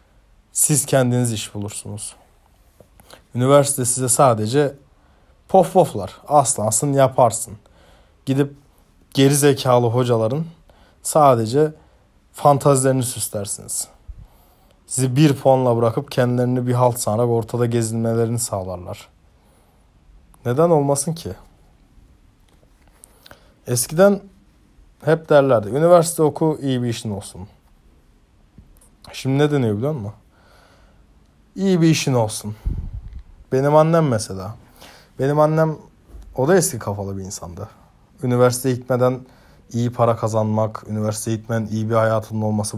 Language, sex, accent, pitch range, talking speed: Turkish, male, native, 105-135 Hz, 100 wpm